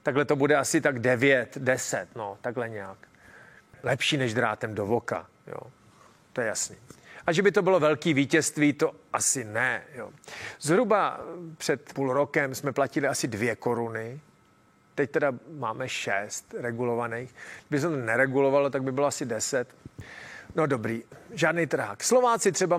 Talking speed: 155 wpm